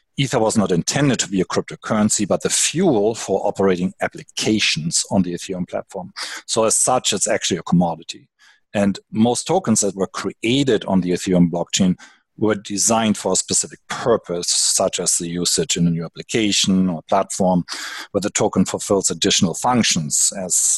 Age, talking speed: 40-59, 165 wpm